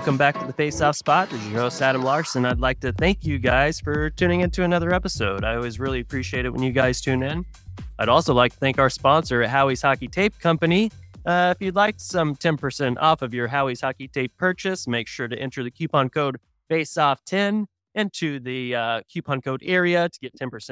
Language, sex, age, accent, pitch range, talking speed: English, male, 30-49, American, 125-155 Hz, 225 wpm